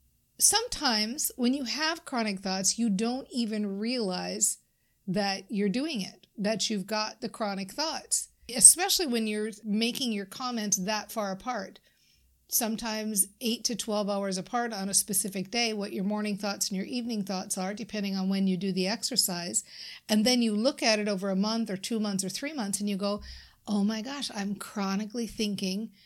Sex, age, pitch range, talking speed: female, 50-69, 195-235 Hz, 180 wpm